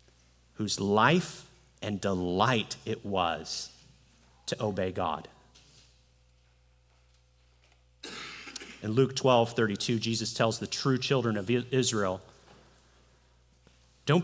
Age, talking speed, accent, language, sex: 30-49, 90 wpm, American, English, male